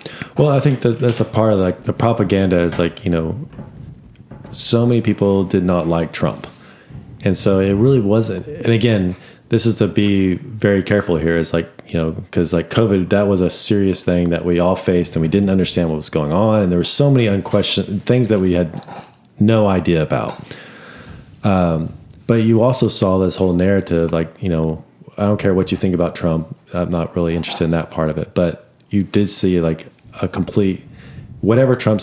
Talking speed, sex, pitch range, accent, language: 205 wpm, male, 85-110 Hz, American, English